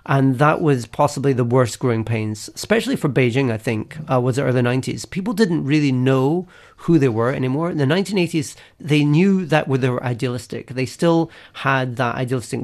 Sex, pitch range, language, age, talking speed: male, 130-165 Hz, English, 40-59, 190 wpm